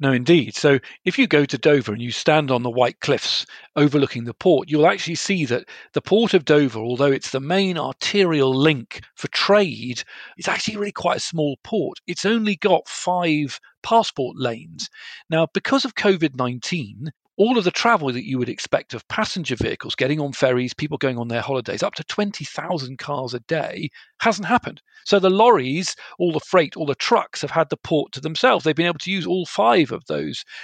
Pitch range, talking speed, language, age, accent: 130-175 Hz, 200 wpm, English, 40-59, British